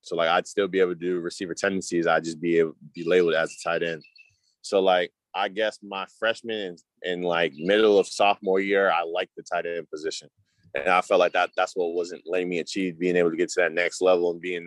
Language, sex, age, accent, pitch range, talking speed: English, male, 20-39, American, 85-100 Hz, 250 wpm